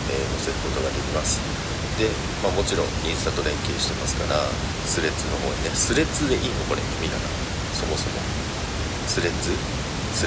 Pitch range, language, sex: 80-100 Hz, Japanese, male